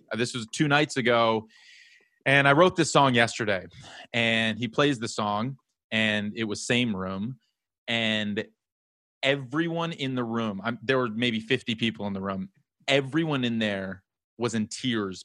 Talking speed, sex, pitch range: 155 wpm, male, 110-130 Hz